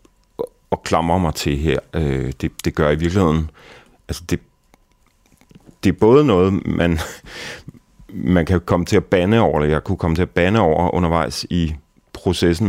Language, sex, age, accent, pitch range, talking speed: Danish, male, 30-49, native, 75-90 Hz, 155 wpm